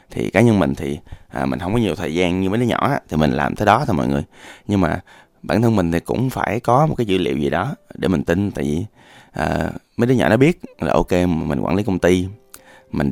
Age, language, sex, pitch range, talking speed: 20-39, Vietnamese, male, 85-115 Hz, 275 wpm